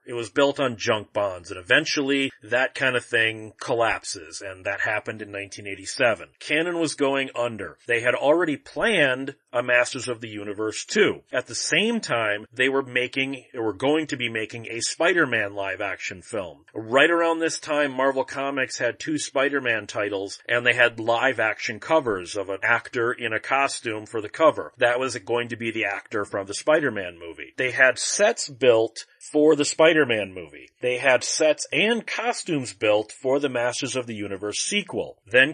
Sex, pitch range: male, 110-140 Hz